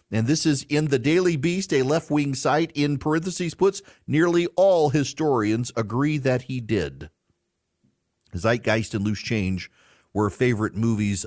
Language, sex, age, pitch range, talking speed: English, male, 40-59, 110-150 Hz, 145 wpm